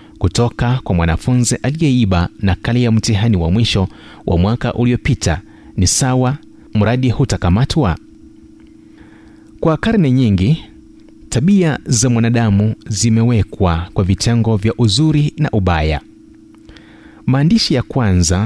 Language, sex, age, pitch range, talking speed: Swahili, male, 30-49, 100-135 Hz, 105 wpm